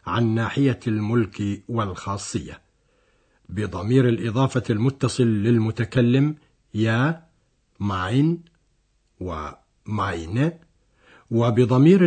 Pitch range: 110-145 Hz